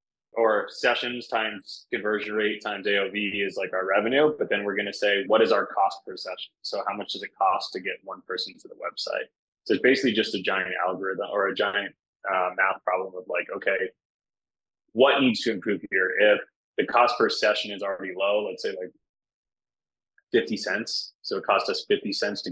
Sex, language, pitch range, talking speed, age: male, English, 95-125 Hz, 205 wpm, 20-39